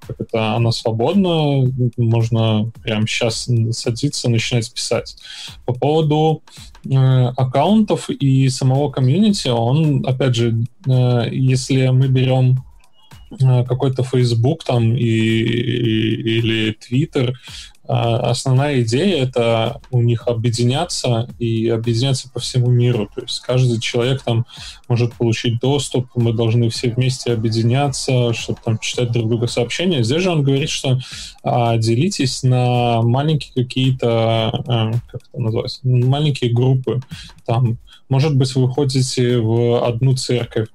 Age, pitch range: 10-29, 115-130 Hz